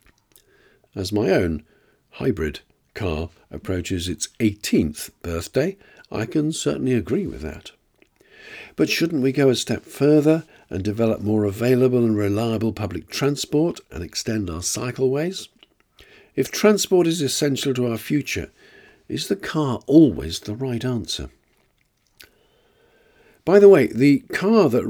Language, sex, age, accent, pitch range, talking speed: English, male, 50-69, British, 110-160 Hz, 130 wpm